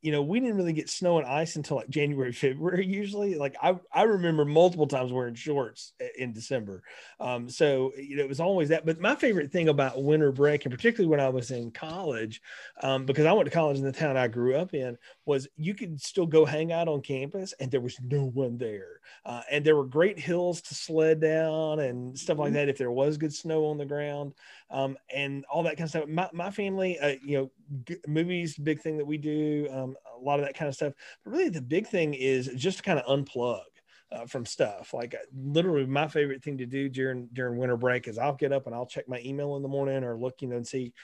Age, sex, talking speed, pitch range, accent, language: 30-49, male, 245 wpm, 130-160 Hz, American, English